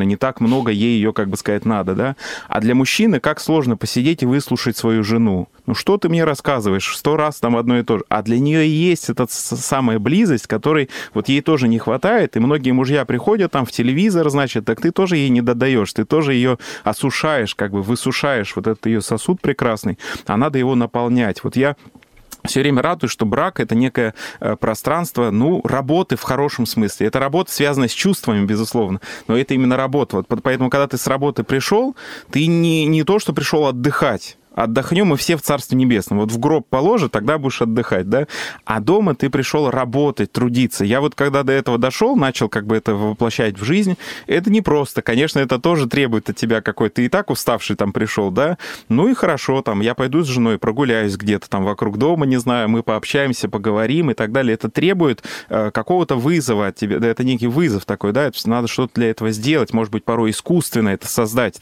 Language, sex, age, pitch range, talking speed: Russian, male, 20-39, 110-145 Hz, 205 wpm